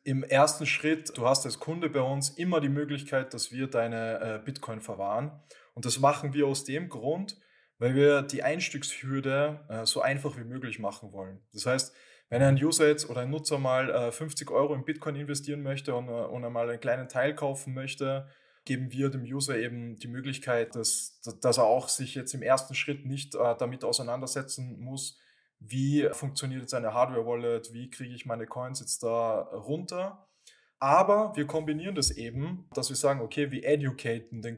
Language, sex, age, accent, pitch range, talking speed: English, male, 20-39, German, 120-145 Hz, 175 wpm